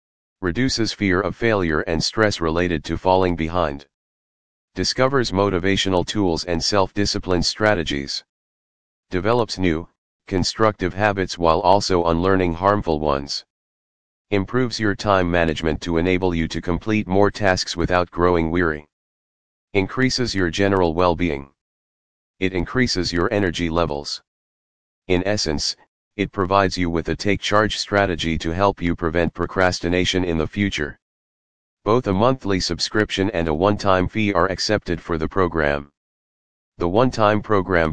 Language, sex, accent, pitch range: English, male, American, 80-100 Hz